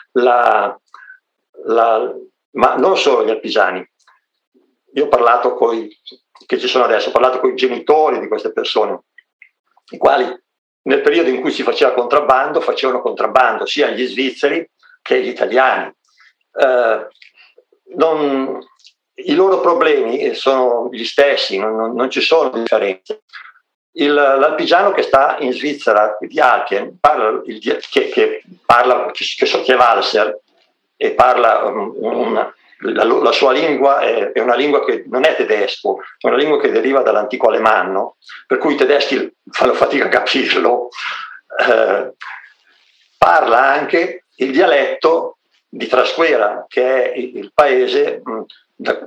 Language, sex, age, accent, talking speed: Italian, male, 50-69, native, 140 wpm